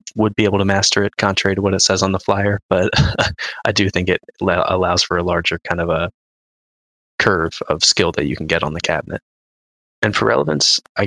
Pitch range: 85-100 Hz